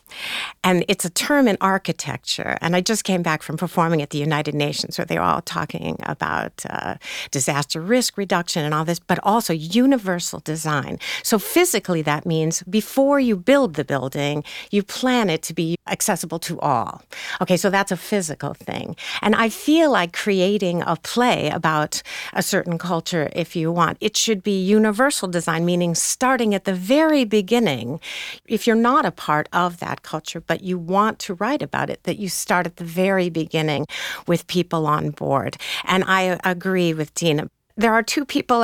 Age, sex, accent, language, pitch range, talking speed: 50-69, female, American, English, 165-215 Hz, 180 wpm